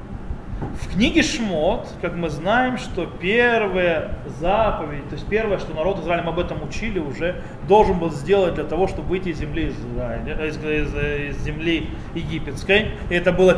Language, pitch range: Russian, 165-235 Hz